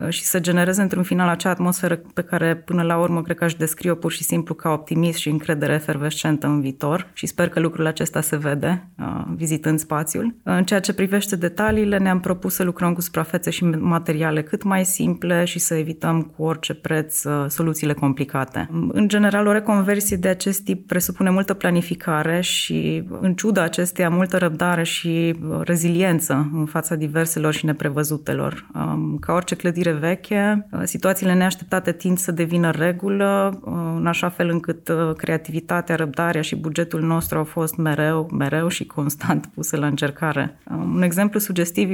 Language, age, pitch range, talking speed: Romanian, 20-39, 155-180 Hz, 165 wpm